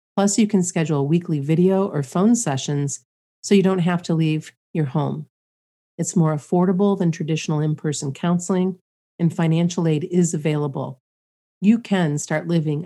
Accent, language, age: American, English, 40-59